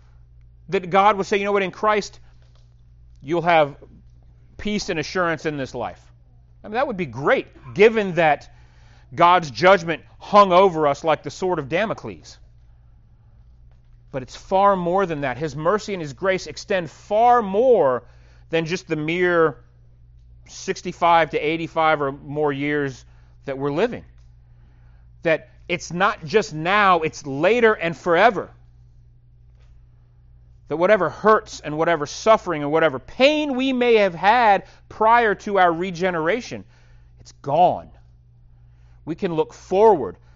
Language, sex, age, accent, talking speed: English, male, 40-59, American, 140 wpm